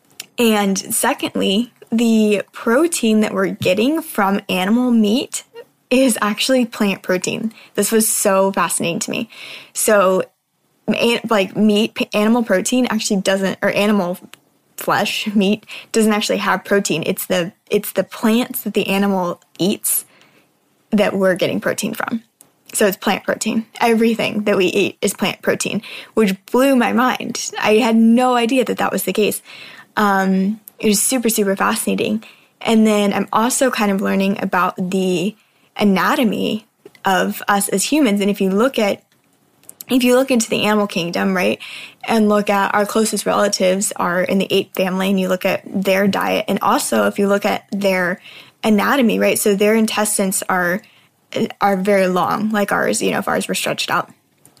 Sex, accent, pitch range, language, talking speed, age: female, American, 195-230 Hz, English, 165 wpm, 10-29